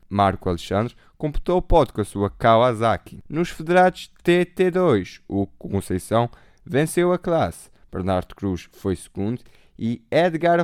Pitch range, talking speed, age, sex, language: 95-160 Hz, 130 wpm, 20-39, male, Portuguese